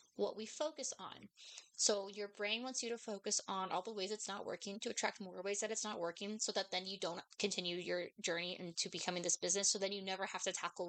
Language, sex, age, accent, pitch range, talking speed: English, female, 20-39, American, 195-235 Hz, 250 wpm